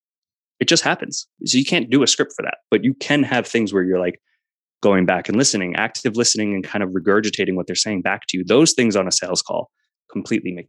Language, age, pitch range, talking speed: English, 20-39, 95-130 Hz, 240 wpm